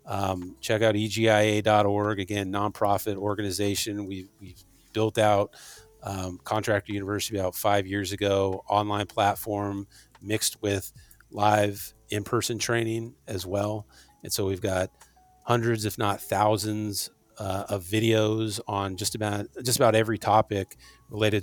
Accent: American